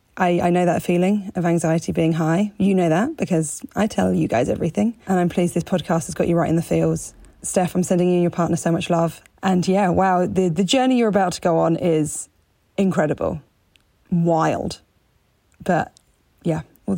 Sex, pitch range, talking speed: female, 170-215 Hz, 200 wpm